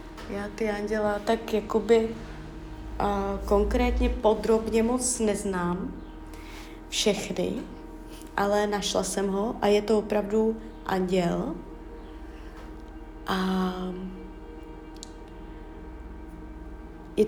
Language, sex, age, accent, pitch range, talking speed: Czech, female, 20-39, native, 185-220 Hz, 75 wpm